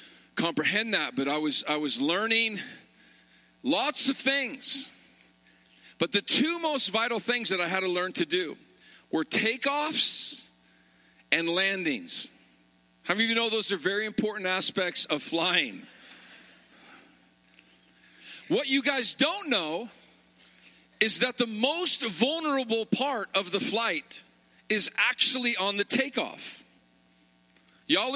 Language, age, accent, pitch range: English, 50-69, American, 190-255 Hz